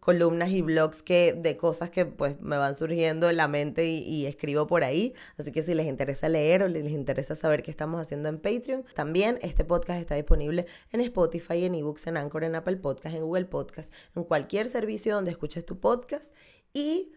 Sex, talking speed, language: female, 205 wpm, Spanish